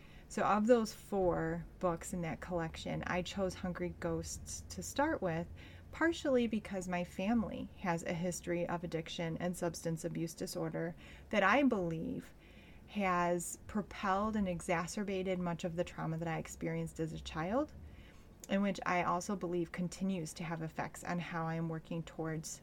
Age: 30-49